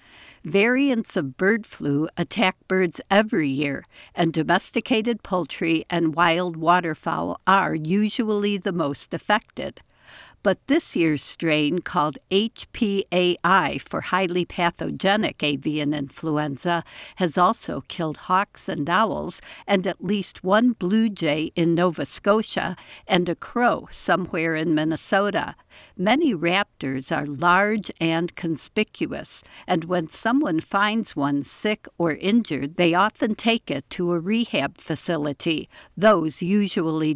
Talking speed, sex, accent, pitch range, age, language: 120 wpm, female, American, 160-205 Hz, 60-79, English